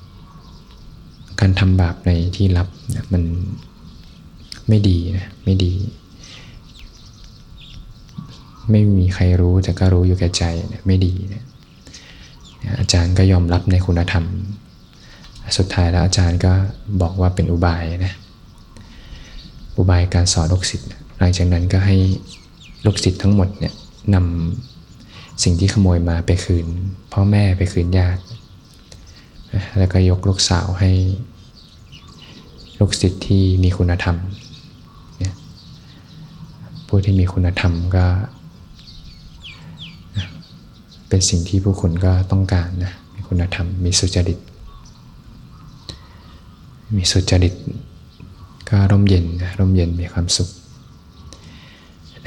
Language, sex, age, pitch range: Thai, male, 20-39, 90-100 Hz